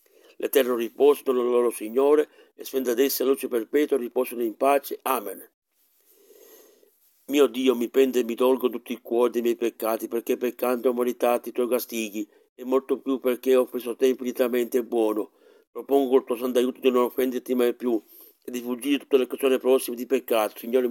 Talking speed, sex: 185 wpm, male